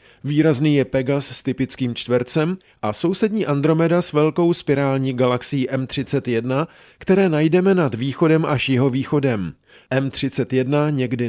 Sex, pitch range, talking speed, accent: male, 125-155 Hz, 120 wpm, native